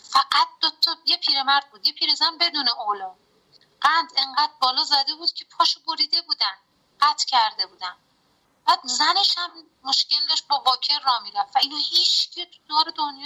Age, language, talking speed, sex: 30-49, English, 160 wpm, female